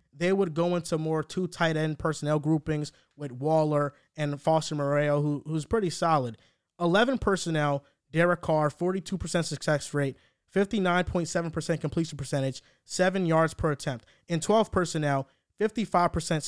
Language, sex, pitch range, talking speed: English, male, 150-185 Hz, 135 wpm